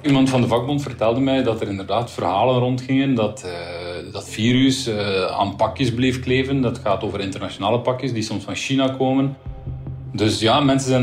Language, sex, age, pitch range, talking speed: Dutch, male, 40-59, 105-135 Hz, 185 wpm